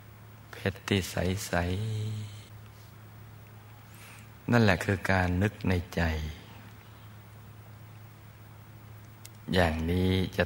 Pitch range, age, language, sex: 90-110 Hz, 60-79, Thai, male